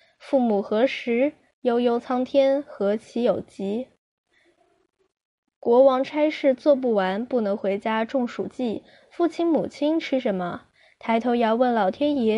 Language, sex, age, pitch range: Chinese, female, 10-29, 210-280 Hz